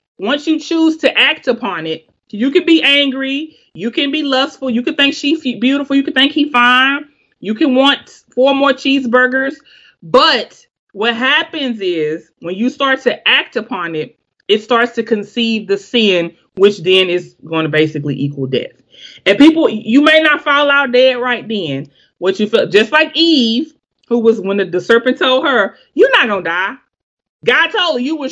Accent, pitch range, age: American, 210-280 Hz, 30-49